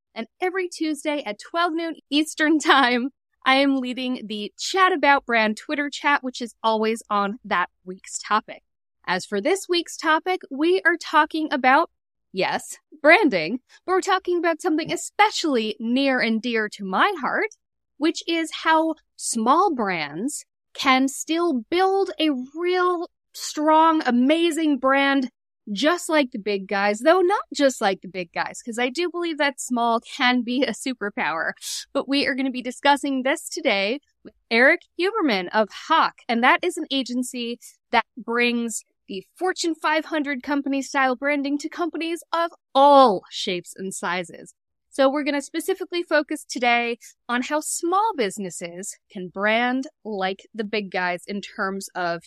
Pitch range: 230-325 Hz